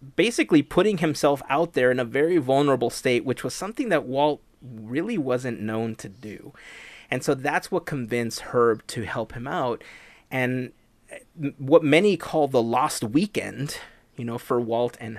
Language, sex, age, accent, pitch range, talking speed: English, male, 30-49, American, 120-150 Hz, 165 wpm